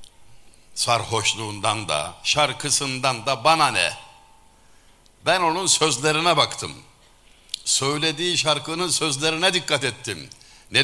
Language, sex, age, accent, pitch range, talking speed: Turkish, male, 60-79, native, 90-140 Hz, 90 wpm